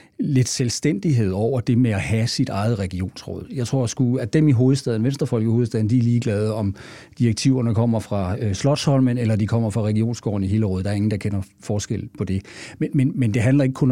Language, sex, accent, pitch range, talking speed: Danish, male, native, 105-125 Hz, 220 wpm